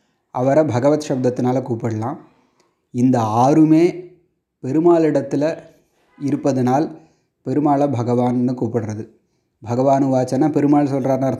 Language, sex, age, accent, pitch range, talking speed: Tamil, male, 30-49, native, 125-165 Hz, 85 wpm